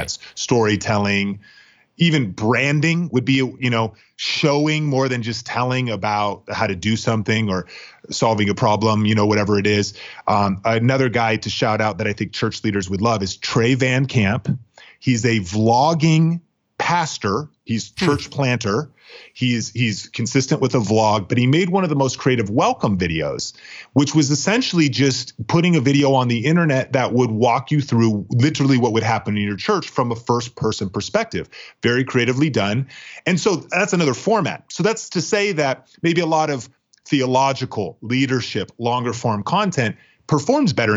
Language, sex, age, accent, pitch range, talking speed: English, male, 30-49, American, 110-145 Hz, 170 wpm